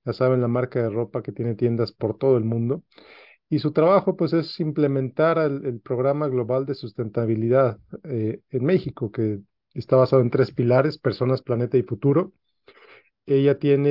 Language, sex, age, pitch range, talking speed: Spanish, male, 40-59, 120-140 Hz, 175 wpm